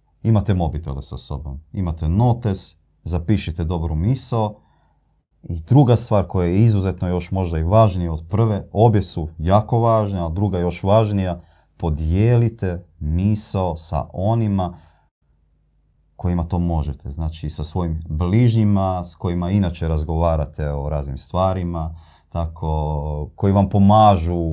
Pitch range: 80-105 Hz